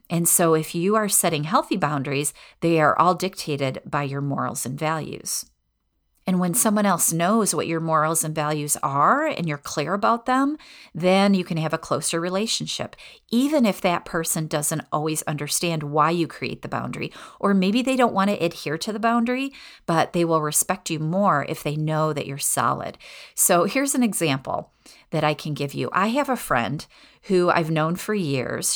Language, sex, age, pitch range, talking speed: English, female, 40-59, 155-200 Hz, 190 wpm